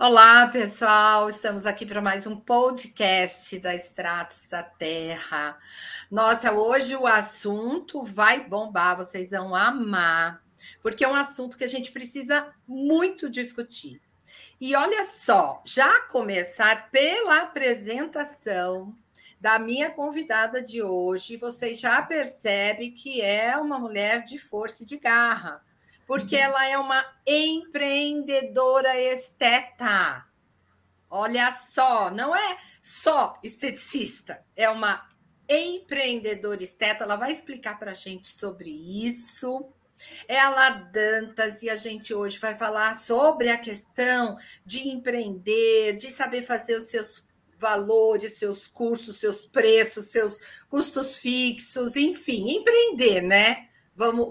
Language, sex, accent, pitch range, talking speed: Portuguese, female, Brazilian, 210-270 Hz, 120 wpm